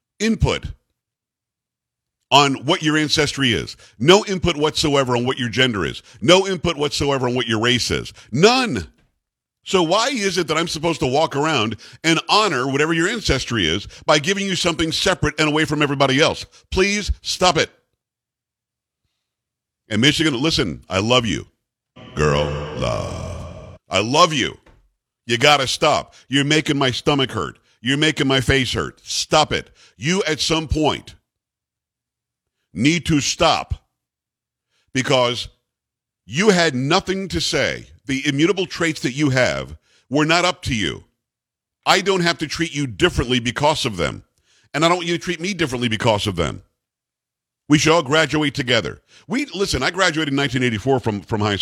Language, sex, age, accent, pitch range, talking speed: English, male, 50-69, American, 125-170 Hz, 160 wpm